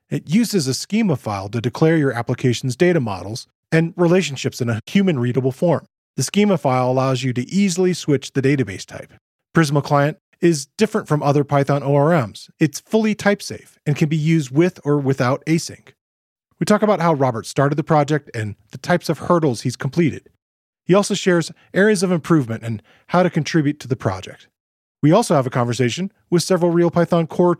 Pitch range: 125-170 Hz